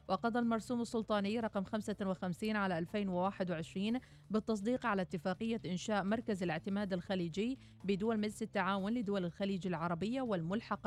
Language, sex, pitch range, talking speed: Arabic, female, 180-215 Hz, 115 wpm